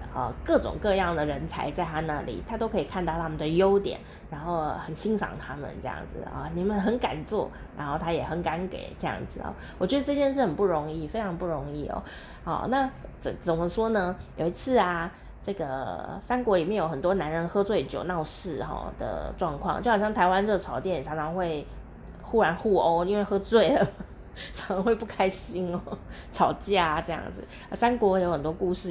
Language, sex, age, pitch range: Chinese, female, 30-49, 165-225 Hz